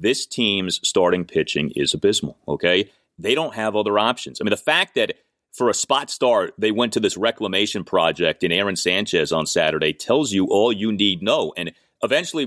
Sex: male